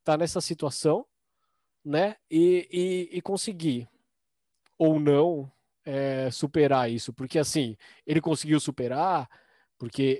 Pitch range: 130-170 Hz